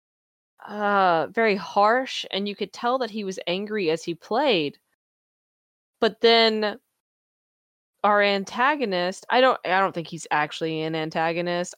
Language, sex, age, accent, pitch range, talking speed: English, female, 20-39, American, 170-215 Hz, 140 wpm